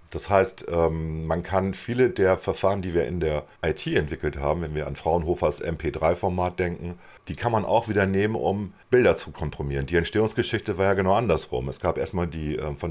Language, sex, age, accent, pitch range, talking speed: German, male, 50-69, German, 80-100 Hz, 195 wpm